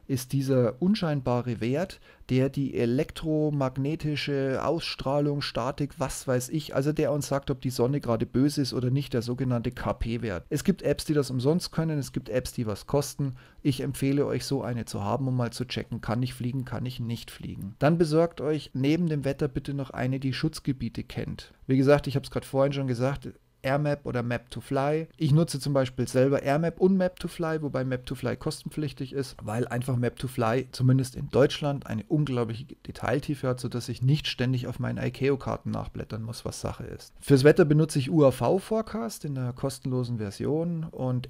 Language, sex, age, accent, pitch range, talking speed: German, male, 30-49, German, 125-150 Hz, 195 wpm